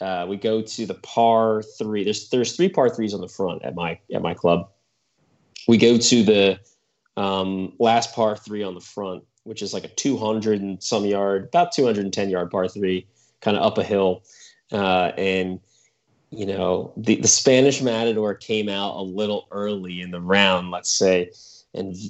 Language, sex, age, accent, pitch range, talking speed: English, male, 30-49, American, 95-115 Hz, 185 wpm